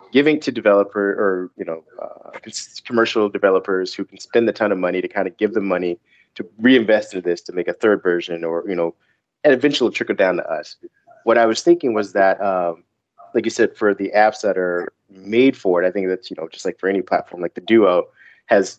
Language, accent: English, American